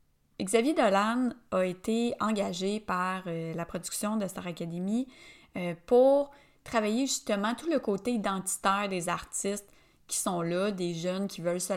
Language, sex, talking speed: French, female, 145 wpm